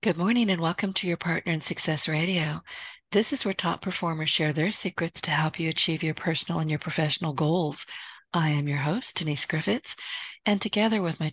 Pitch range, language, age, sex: 155-185 Hz, English, 50-69, female